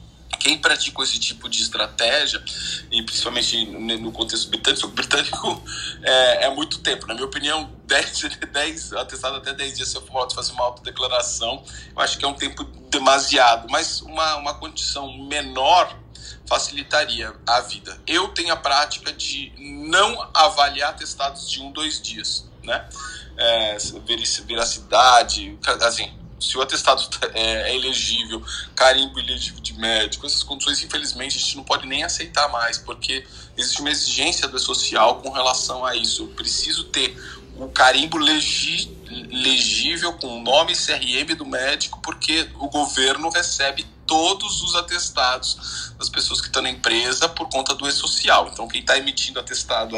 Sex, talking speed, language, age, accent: male, 145 wpm, Portuguese, 20-39, Brazilian